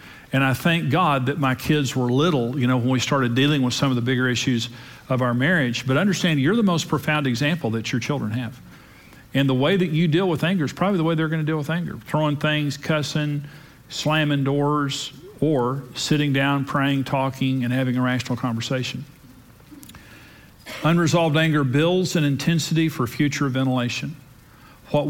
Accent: American